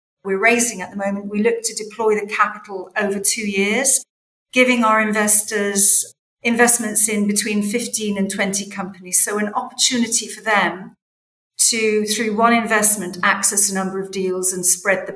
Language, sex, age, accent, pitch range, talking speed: English, female, 40-59, British, 195-225 Hz, 160 wpm